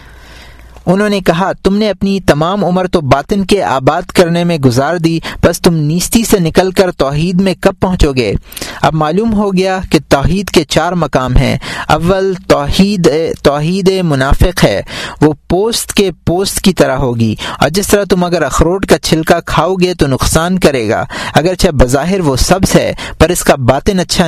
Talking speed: 180 wpm